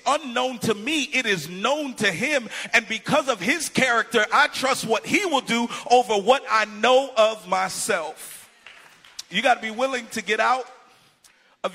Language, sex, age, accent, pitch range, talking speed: English, male, 40-59, American, 165-225 Hz, 175 wpm